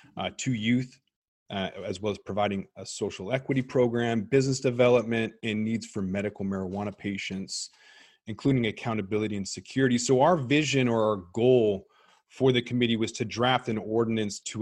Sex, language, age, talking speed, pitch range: male, English, 30-49, 160 wpm, 105-130 Hz